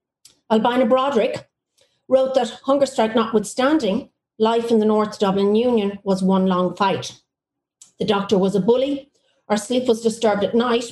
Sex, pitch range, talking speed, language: female, 200-235 Hz, 155 wpm, English